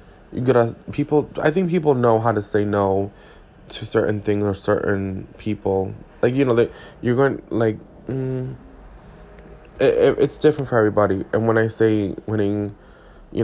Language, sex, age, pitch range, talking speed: English, male, 20-39, 100-125 Hz, 160 wpm